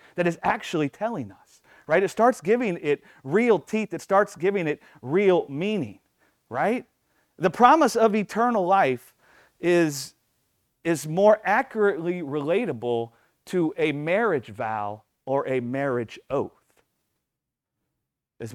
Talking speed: 125 wpm